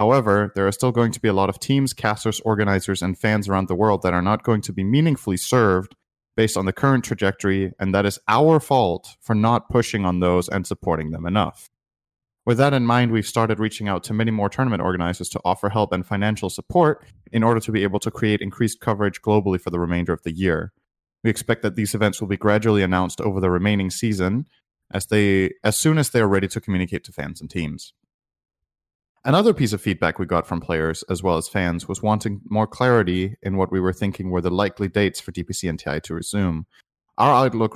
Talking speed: 220 wpm